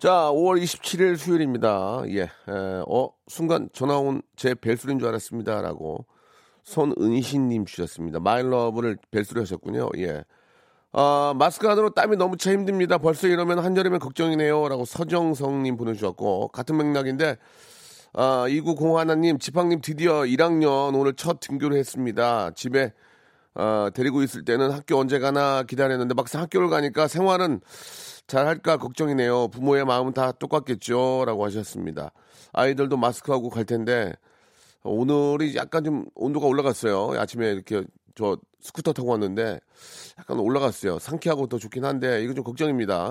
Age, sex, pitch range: 40-59, male, 120-160 Hz